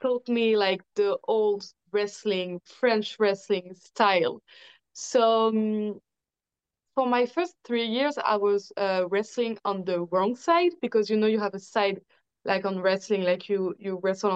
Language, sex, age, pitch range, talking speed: English, female, 20-39, 195-240 Hz, 160 wpm